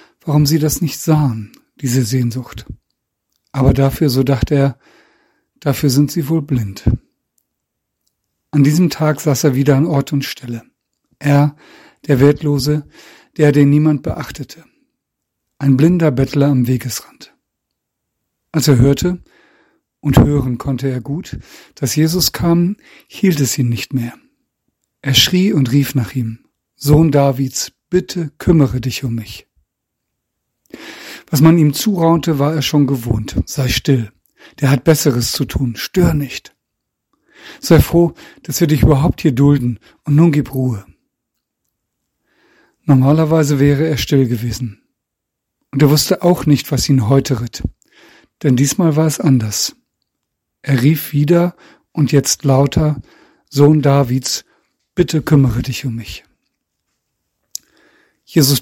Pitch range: 130-155 Hz